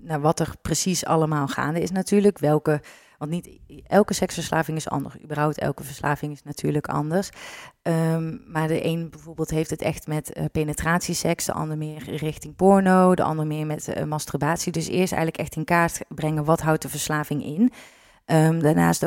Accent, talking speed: Dutch, 170 wpm